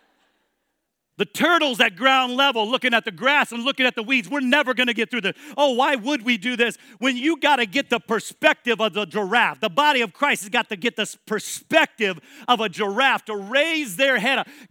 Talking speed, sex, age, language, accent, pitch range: 215 wpm, male, 40-59, English, American, 230-290 Hz